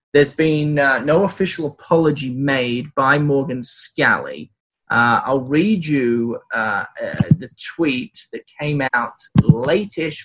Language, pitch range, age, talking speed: English, 125-155 Hz, 20-39, 130 wpm